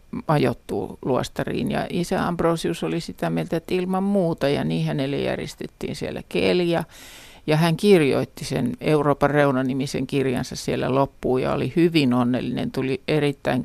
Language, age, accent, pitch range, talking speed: Finnish, 50-69, native, 135-170 Hz, 140 wpm